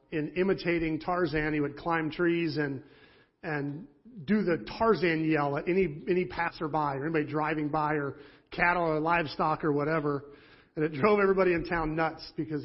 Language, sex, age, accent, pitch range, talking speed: English, male, 40-59, American, 145-170 Hz, 165 wpm